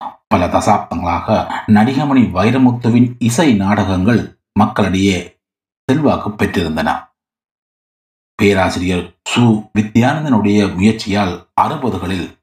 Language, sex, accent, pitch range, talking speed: Tamil, male, native, 100-125 Hz, 70 wpm